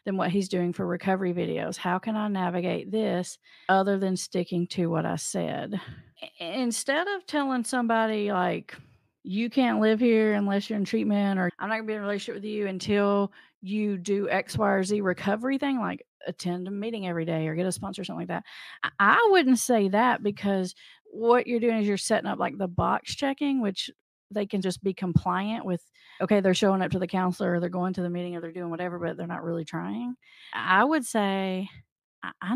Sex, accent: female, American